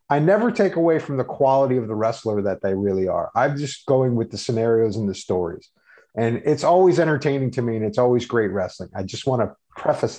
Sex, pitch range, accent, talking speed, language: male, 110-145 Hz, American, 230 wpm, English